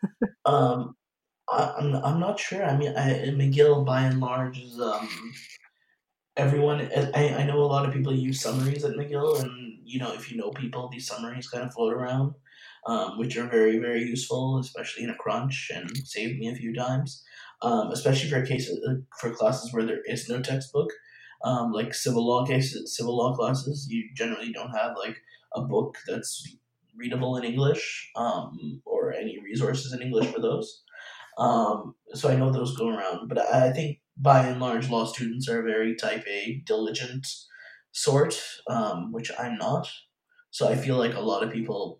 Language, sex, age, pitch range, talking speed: English, male, 20-39, 125-145 Hz, 180 wpm